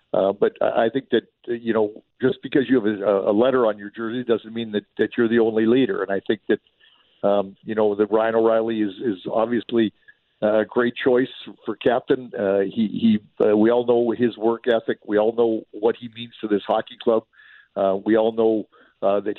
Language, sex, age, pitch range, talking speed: English, male, 50-69, 110-125 Hz, 215 wpm